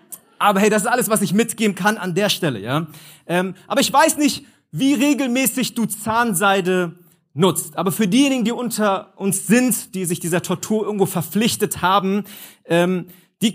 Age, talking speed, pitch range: 30-49, 175 wpm, 165-215 Hz